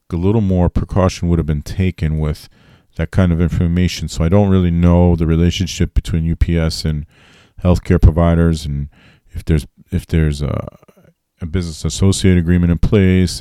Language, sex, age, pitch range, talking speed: English, male, 40-59, 80-90 Hz, 165 wpm